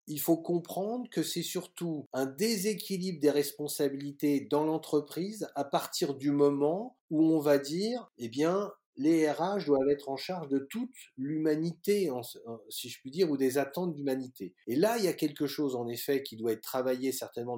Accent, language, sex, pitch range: French, French, male, 135-175 Hz